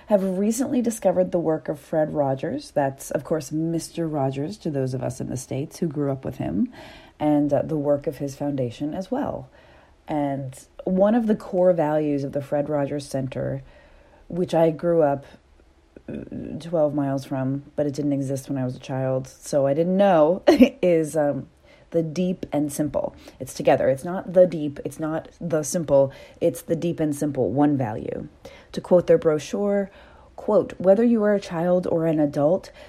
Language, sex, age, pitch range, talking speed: English, female, 30-49, 140-185 Hz, 185 wpm